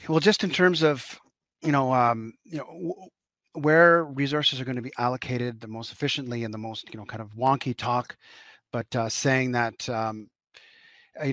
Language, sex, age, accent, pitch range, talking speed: English, male, 30-49, American, 125-145 Hz, 190 wpm